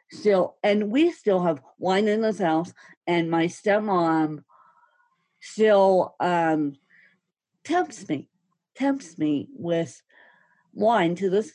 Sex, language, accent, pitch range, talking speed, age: female, English, American, 170-235 Hz, 115 wpm, 50-69